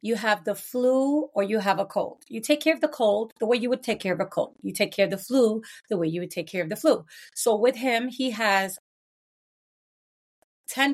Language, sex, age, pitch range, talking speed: English, female, 30-49, 180-225 Hz, 245 wpm